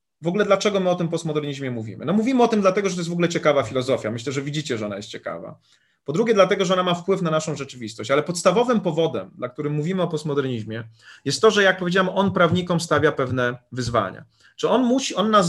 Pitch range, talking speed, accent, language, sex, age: 135-175 Hz, 235 wpm, native, Polish, male, 30-49